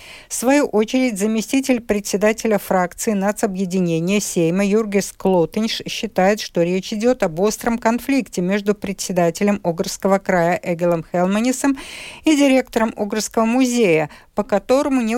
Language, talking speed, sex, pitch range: Russian, 120 wpm, female, 185-230 Hz